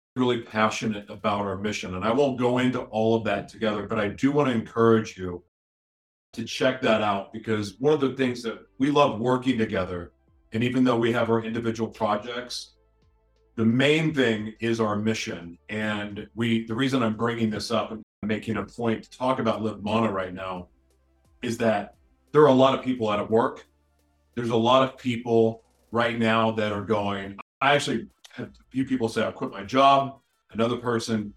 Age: 40-59